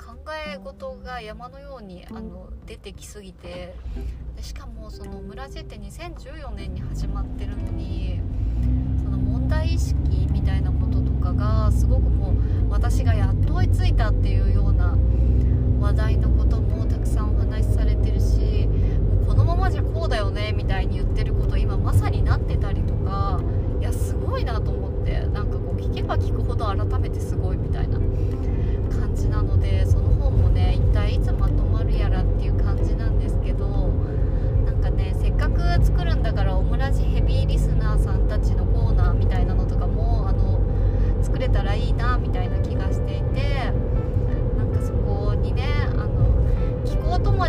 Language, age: Japanese, 20-39